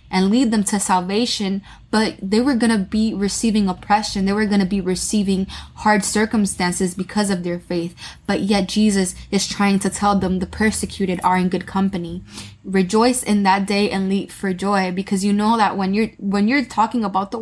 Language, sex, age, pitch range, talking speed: English, female, 20-39, 185-210 Hz, 195 wpm